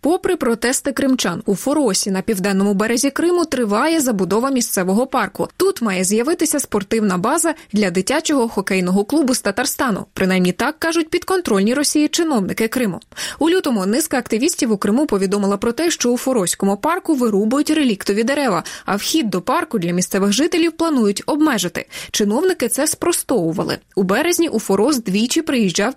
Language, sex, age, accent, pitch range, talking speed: Russian, female, 20-39, native, 205-295 Hz, 150 wpm